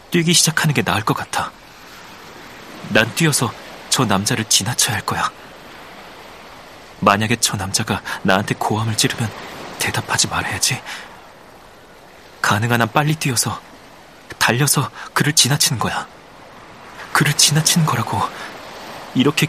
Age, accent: 30-49, native